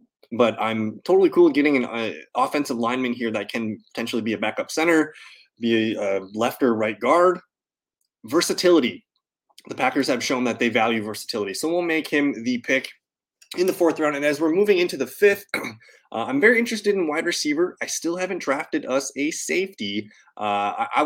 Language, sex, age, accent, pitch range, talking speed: English, male, 20-39, American, 110-155 Hz, 190 wpm